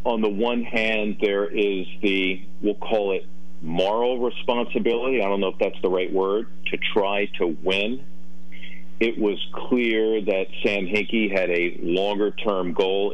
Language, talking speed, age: English, 155 wpm, 50-69